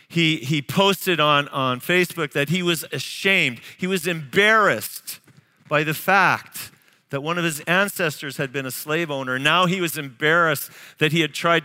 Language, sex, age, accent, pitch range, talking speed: English, male, 50-69, American, 125-175 Hz, 175 wpm